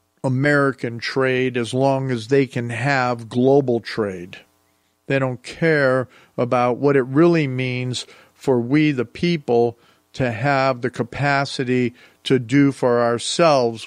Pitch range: 115-140 Hz